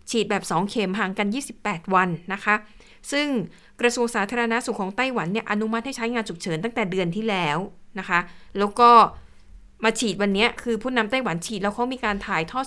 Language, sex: Thai, female